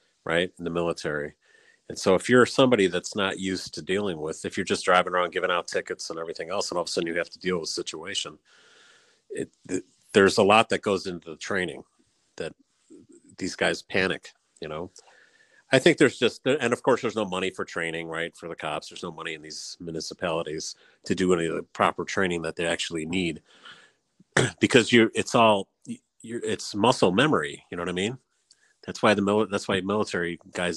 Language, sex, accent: English, male, American